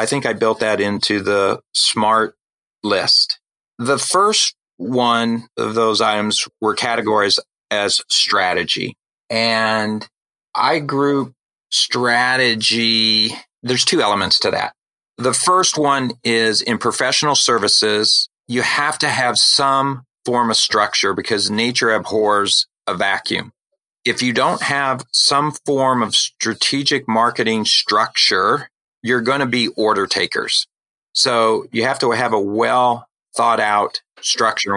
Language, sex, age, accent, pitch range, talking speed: English, male, 40-59, American, 105-130 Hz, 130 wpm